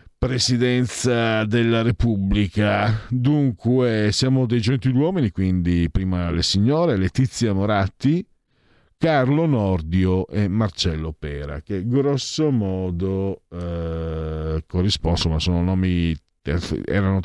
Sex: male